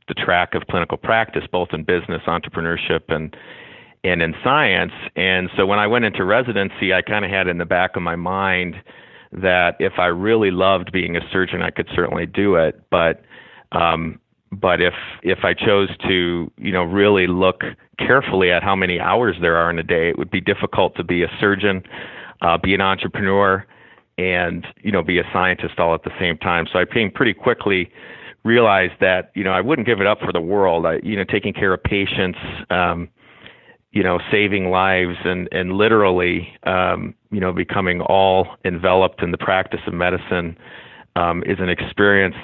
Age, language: 40-59, English